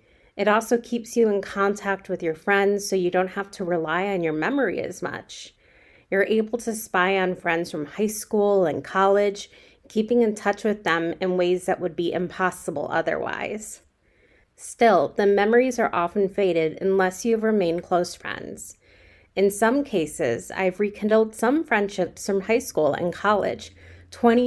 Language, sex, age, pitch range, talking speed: English, female, 30-49, 180-220 Hz, 165 wpm